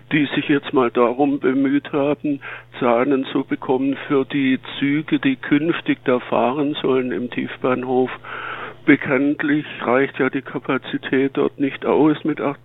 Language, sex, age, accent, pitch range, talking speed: German, male, 60-79, German, 130-145 Hz, 140 wpm